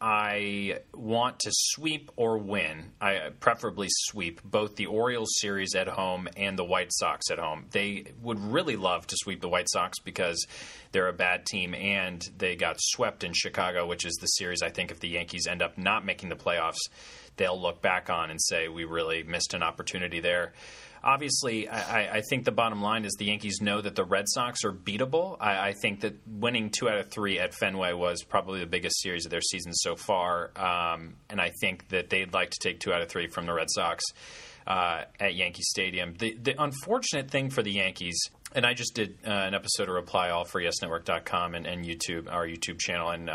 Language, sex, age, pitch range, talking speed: English, male, 30-49, 90-115 Hz, 210 wpm